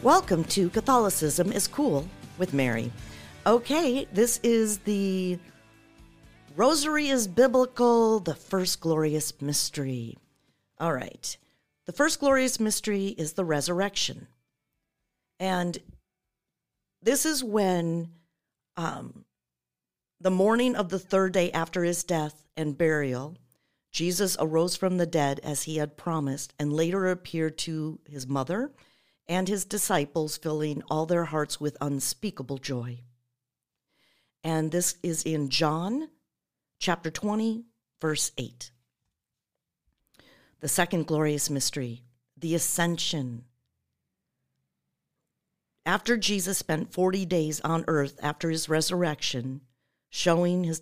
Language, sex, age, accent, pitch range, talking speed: English, female, 50-69, American, 145-190 Hz, 110 wpm